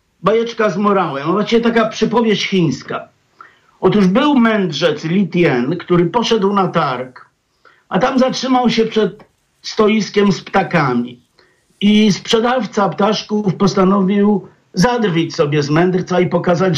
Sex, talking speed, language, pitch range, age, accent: male, 120 wpm, Polish, 170-215 Hz, 50-69, native